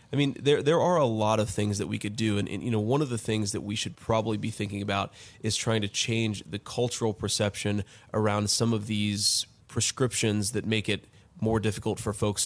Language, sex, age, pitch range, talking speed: English, male, 20-39, 105-115 Hz, 225 wpm